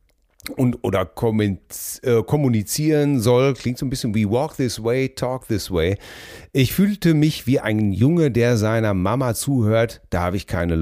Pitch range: 95-125 Hz